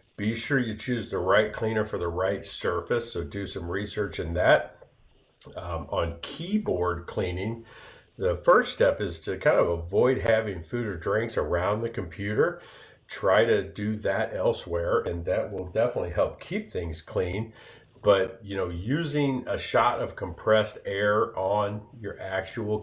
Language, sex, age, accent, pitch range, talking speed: English, male, 50-69, American, 90-110 Hz, 160 wpm